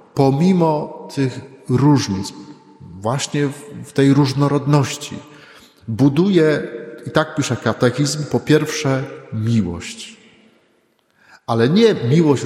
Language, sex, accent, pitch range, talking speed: Polish, male, native, 115-140 Hz, 85 wpm